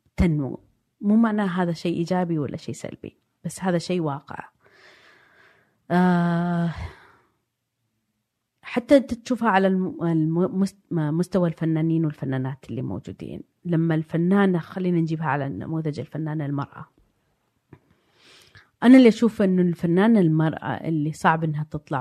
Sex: female